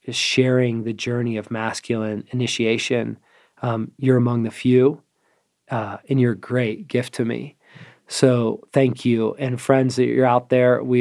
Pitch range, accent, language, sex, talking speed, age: 115-130 Hz, American, English, male, 165 wpm, 40-59